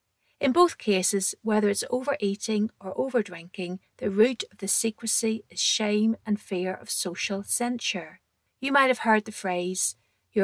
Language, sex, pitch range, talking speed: English, female, 185-240 Hz, 155 wpm